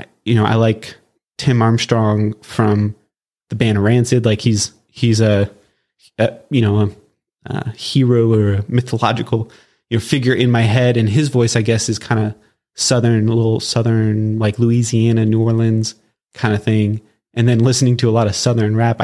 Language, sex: English, male